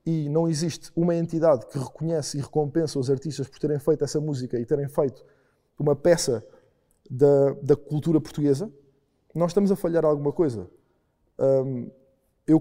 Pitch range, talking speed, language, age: 145-165 Hz, 150 wpm, Portuguese, 20-39